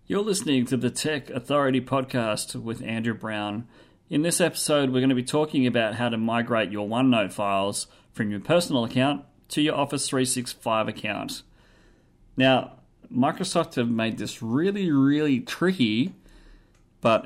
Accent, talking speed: Australian, 150 wpm